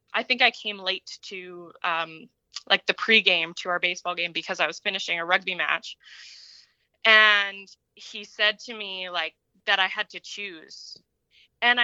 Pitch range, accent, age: 180-220 Hz, American, 20-39